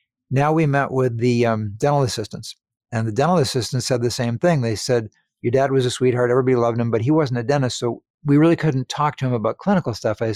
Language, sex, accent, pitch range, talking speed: English, male, American, 115-140 Hz, 245 wpm